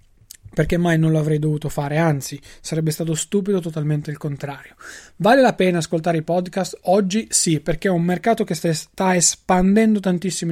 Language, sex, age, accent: Italian, male, 20-39, native